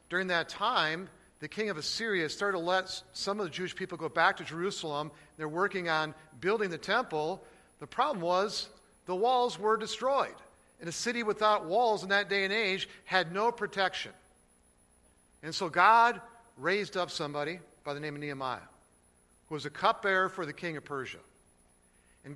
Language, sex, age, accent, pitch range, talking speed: English, male, 50-69, American, 140-190 Hz, 175 wpm